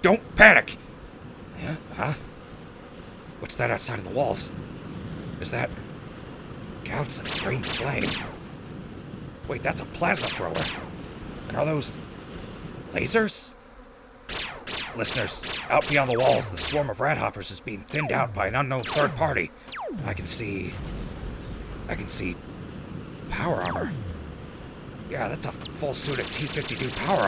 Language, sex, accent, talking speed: English, male, American, 130 wpm